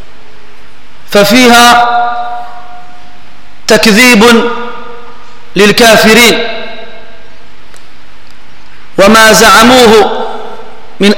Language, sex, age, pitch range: French, male, 40-59, 210-240 Hz